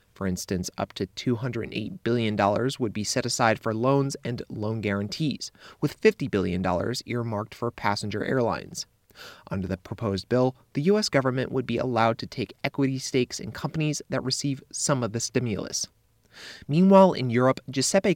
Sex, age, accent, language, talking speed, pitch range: male, 30-49, American, English, 160 wpm, 110-135 Hz